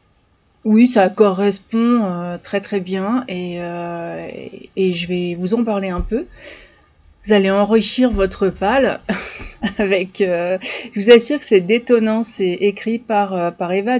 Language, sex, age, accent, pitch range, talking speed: French, female, 30-49, French, 195-235 Hz, 155 wpm